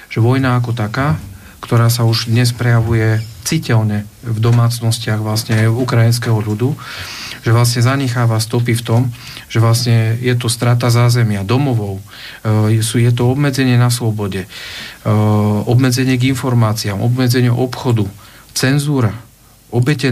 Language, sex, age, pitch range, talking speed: Slovak, male, 40-59, 115-130 Hz, 120 wpm